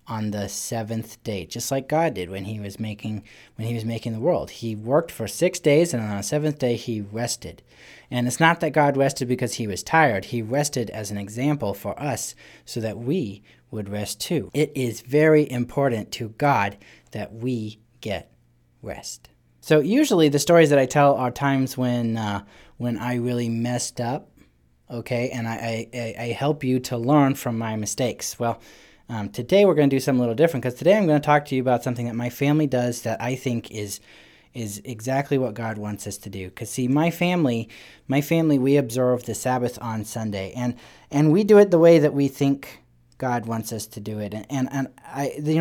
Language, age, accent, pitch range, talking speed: English, 30-49, American, 110-145 Hz, 210 wpm